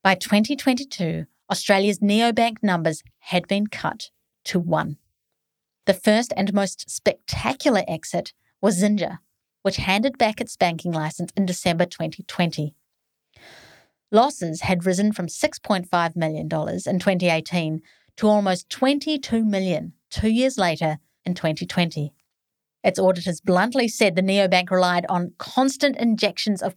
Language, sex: English, female